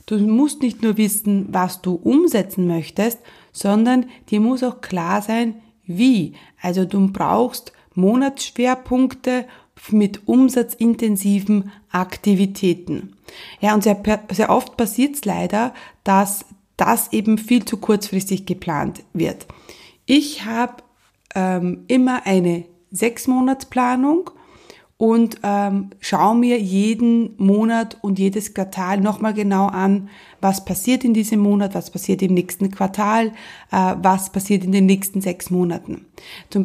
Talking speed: 125 wpm